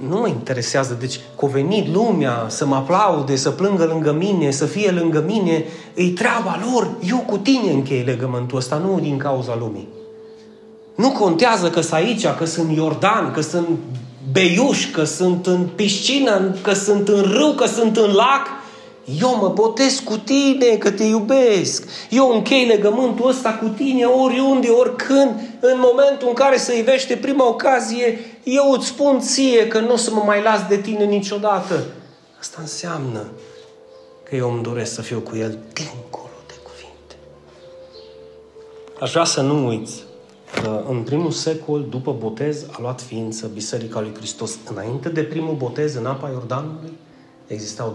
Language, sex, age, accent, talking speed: Romanian, male, 30-49, native, 165 wpm